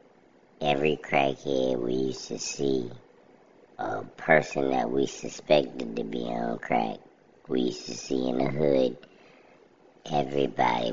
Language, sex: English, male